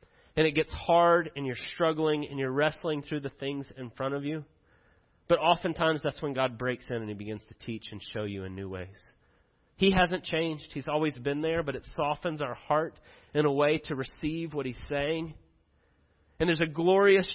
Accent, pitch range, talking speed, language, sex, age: American, 140-180 Hz, 205 wpm, English, male, 30-49